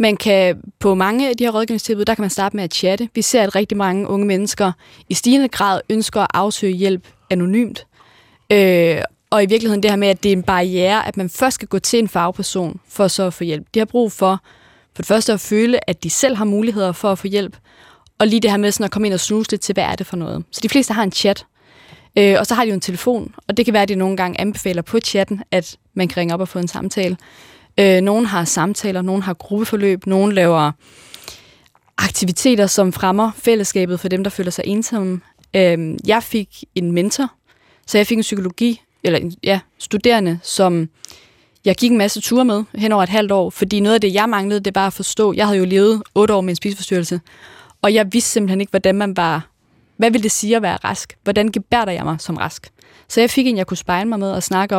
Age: 20-39